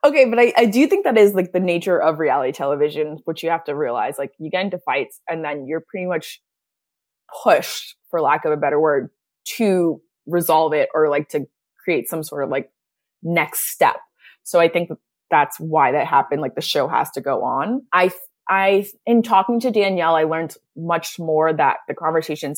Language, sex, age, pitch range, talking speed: English, female, 20-39, 155-195 Hz, 200 wpm